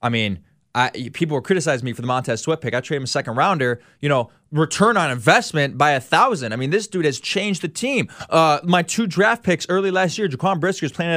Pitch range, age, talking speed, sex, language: 135-185 Hz, 20-39, 240 wpm, male, English